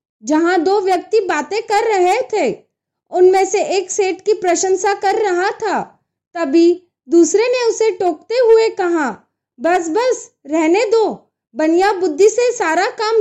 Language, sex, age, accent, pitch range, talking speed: Hindi, female, 20-39, native, 350-425 Hz, 145 wpm